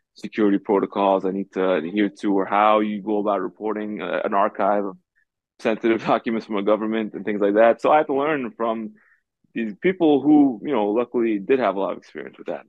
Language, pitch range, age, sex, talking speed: English, 100-125 Hz, 20-39, male, 215 wpm